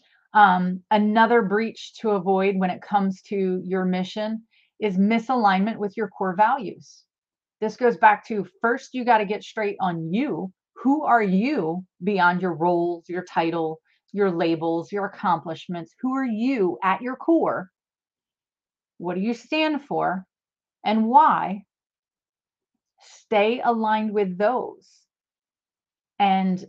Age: 30-49